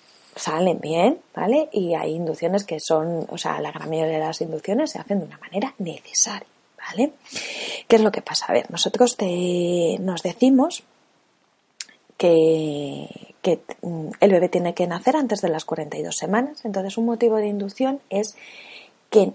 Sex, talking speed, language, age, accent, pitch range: female, 165 wpm, Spanish, 30-49, Spanish, 175-235 Hz